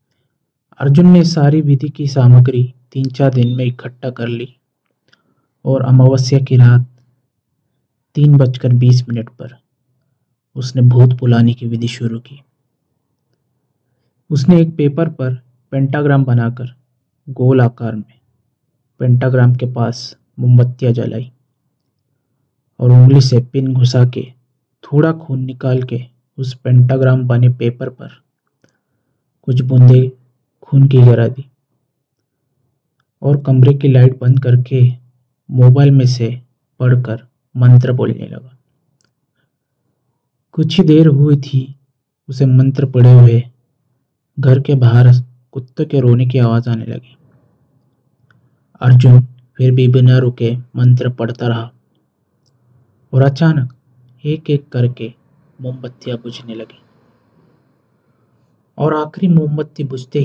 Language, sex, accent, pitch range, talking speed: Hindi, male, native, 125-135 Hz, 115 wpm